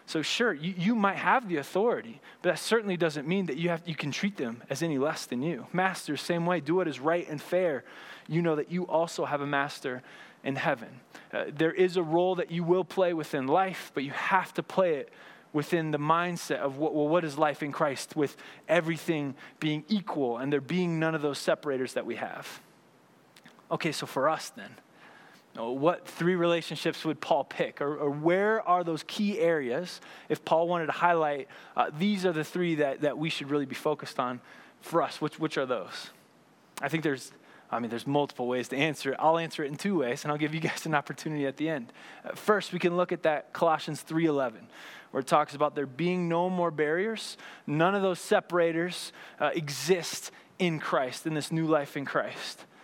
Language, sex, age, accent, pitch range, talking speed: English, male, 20-39, American, 150-180 Hz, 210 wpm